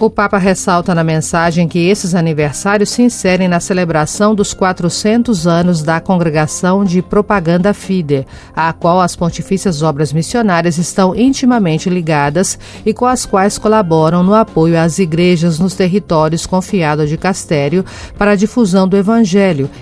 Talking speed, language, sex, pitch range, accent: 145 wpm, Portuguese, female, 160-200 Hz, Brazilian